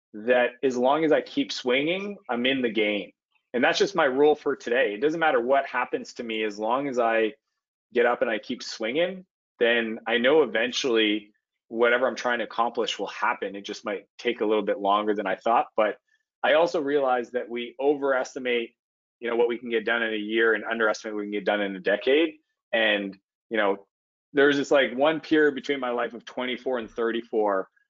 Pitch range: 110-140 Hz